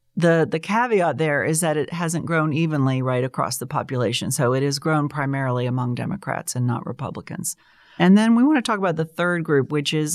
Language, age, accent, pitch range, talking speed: English, 40-59, American, 125-165 Hz, 215 wpm